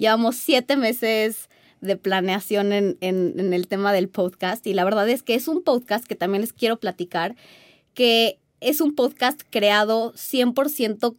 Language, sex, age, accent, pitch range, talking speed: Spanish, female, 20-39, Mexican, 190-245 Hz, 160 wpm